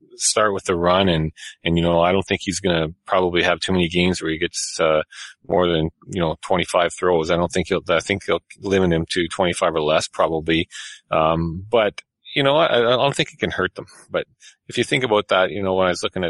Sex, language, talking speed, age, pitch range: male, English, 260 wpm, 30-49, 80-95 Hz